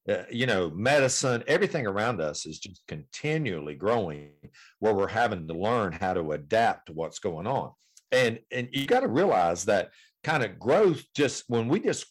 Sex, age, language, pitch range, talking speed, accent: male, 50-69, English, 105-150 Hz, 185 wpm, American